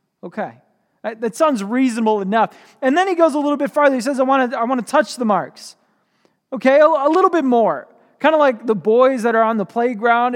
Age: 20-39